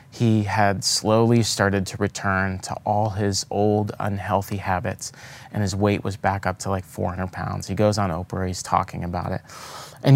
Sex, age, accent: male, 30-49, American